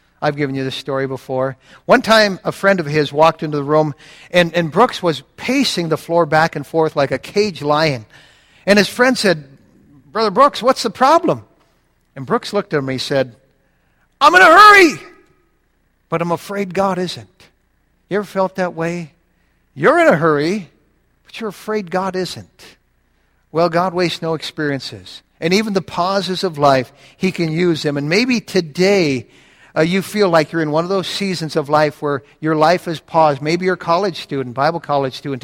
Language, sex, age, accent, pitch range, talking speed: English, male, 50-69, American, 135-180 Hz, 190 wpm